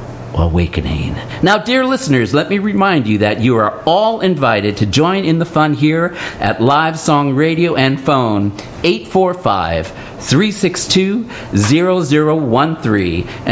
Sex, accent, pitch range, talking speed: male, American, 115-175 Hz, 115 wpm